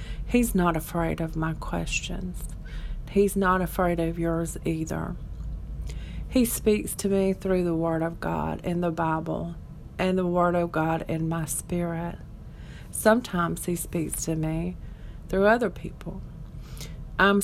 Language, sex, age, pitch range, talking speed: English, female, 40-59, 160-190 Hz, 140 wpm